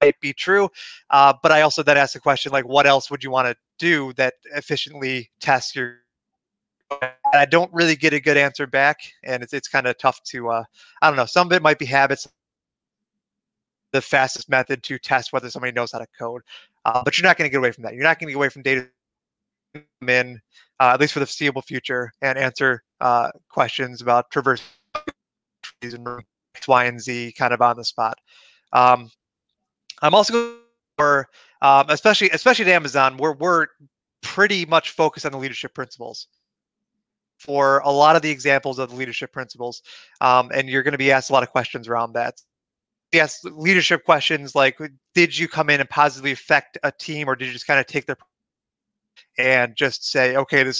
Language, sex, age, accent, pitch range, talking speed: English, male, 30-49, American, 125-150 Hz, 200 wpm